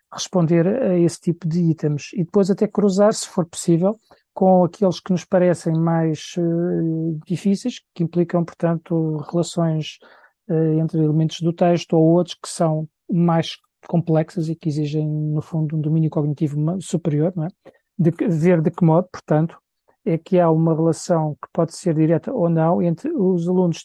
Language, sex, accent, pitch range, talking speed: Portuguese, male, Portuguese, 160-180 Hz, 170 wpm